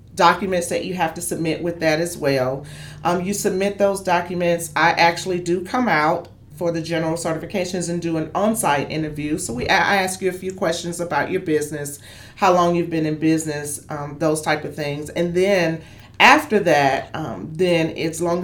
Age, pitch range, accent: 40-59, 150-190 Hz, American